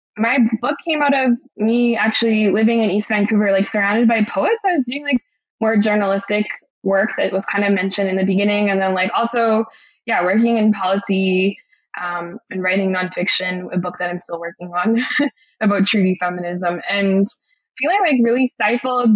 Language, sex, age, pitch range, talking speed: English, female, 20-39, 185-230 Hz, 180 wpm